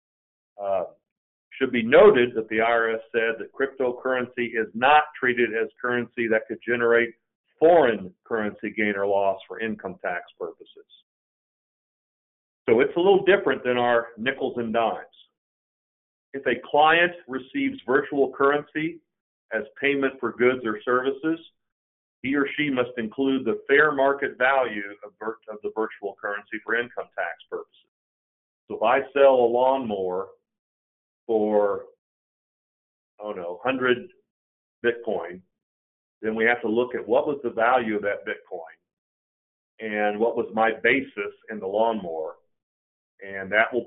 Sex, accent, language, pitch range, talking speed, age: male, American, English, 105-135 Hz, 140 wpm, 50-69